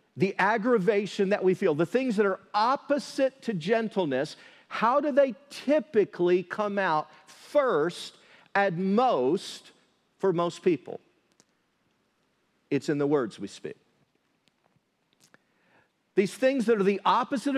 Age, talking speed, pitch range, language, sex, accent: 50-69, 125 wpm, 175-240 Hz, English, male, American